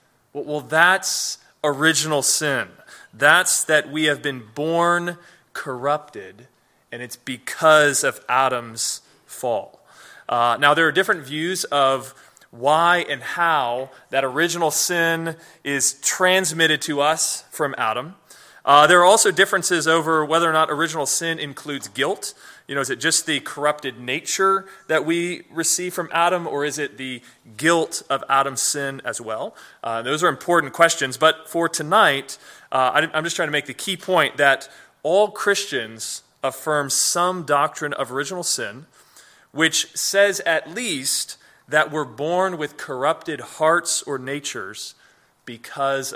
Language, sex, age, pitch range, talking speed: English, male, 20-39, 135-170 Hz, 145 wpm